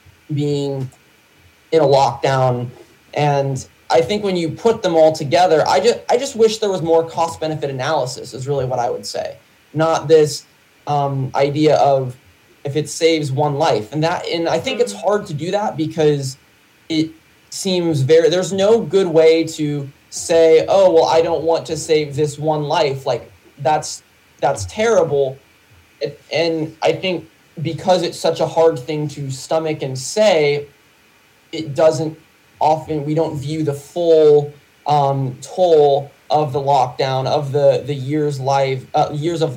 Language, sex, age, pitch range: English, male, 20-39, 140-165 Hz